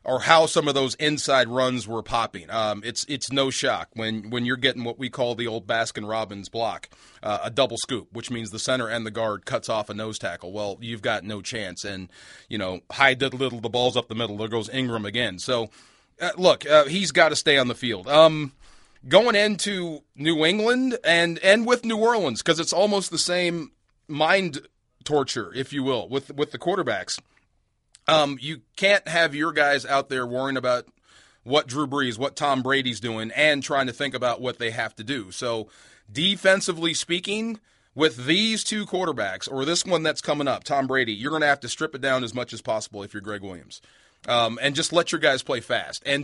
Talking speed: 210 wpm